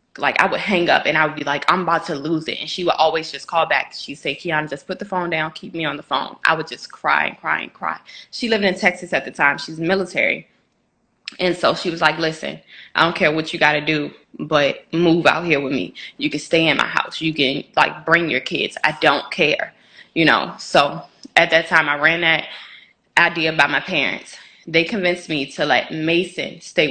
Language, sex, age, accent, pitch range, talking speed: English, female, 20-39, American, 155-185 Hz, 240 wpm